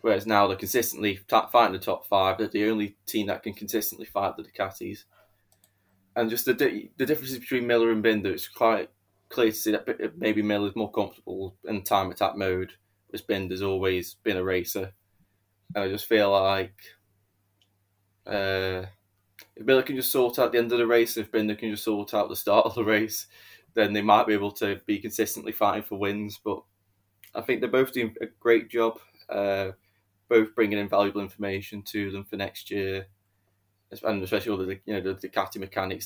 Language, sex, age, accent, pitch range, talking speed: English, male, 20-39, British, 95-110 Hz, 195 wpm